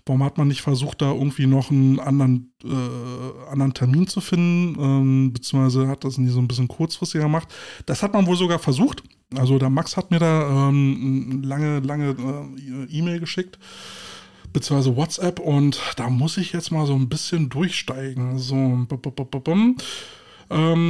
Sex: male